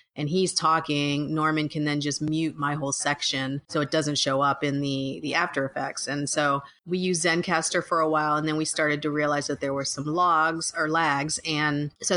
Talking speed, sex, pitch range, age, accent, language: 215 wpm, female, 145-170 Hz, 30-49, American, English